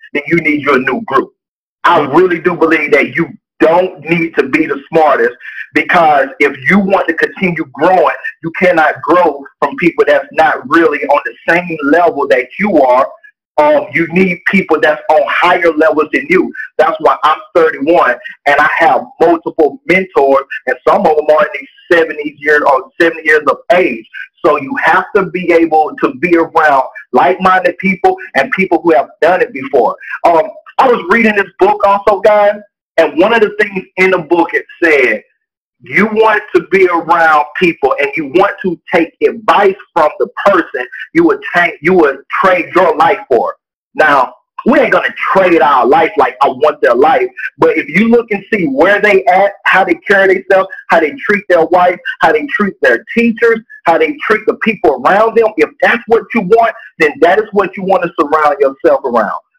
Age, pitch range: 40-59, 165-235 Hz